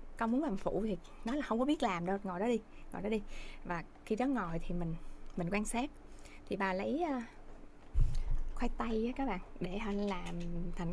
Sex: female